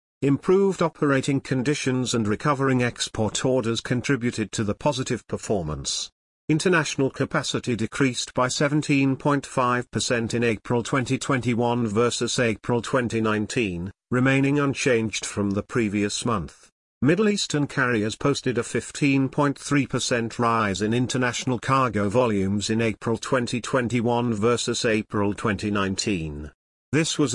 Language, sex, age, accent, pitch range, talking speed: English, male, 50-69, British, 110-135 Hz, 105 wpm